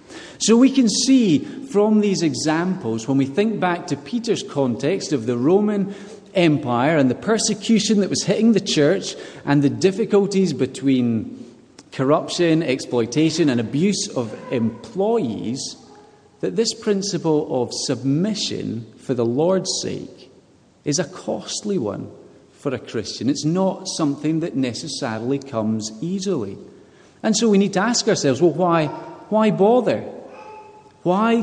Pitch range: 140-205 Hz